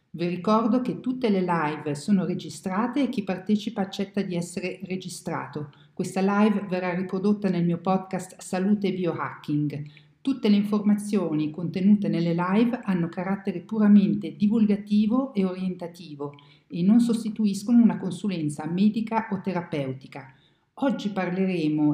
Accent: native